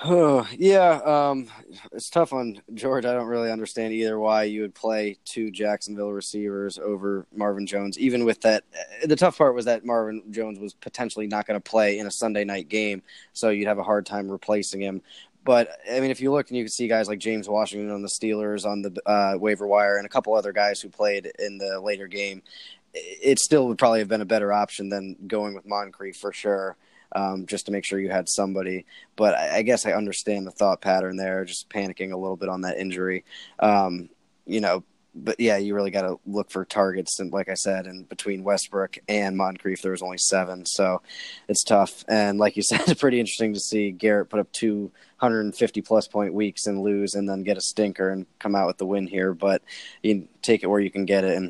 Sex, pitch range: male, 95-110 Hz